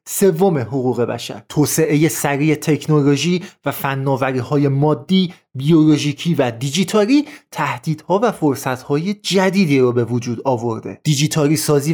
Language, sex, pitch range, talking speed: Persian, male, 145-185 Hz, 110 wpm